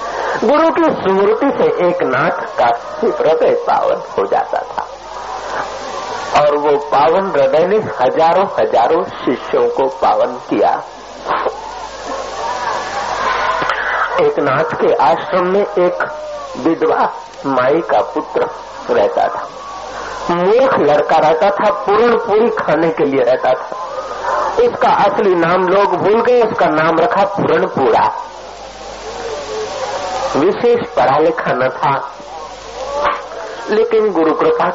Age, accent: 50-69, native